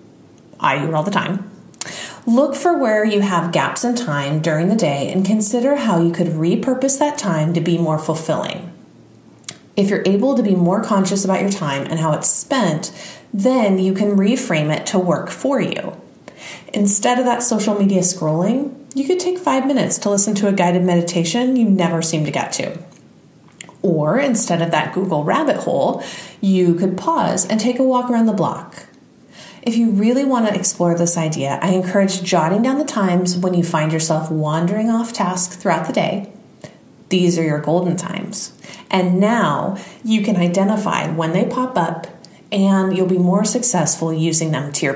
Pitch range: 170-215 Hz